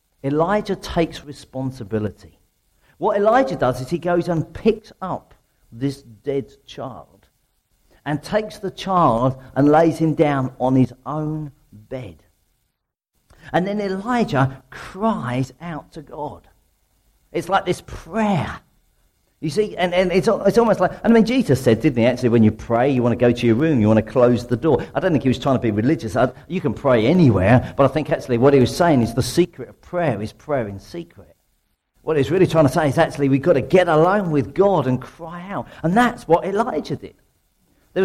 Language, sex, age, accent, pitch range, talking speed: English, male, 50-69, British, 120-175 Hz, 195 wpm